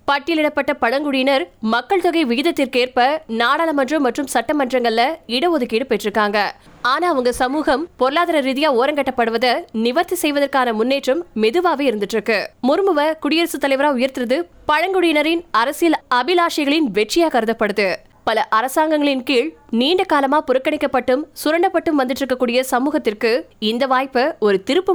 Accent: native